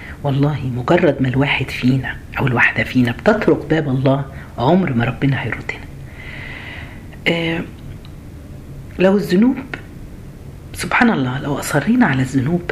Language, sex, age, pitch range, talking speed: Arabic, female, 40-59, 135-185 Hz, 115 wpm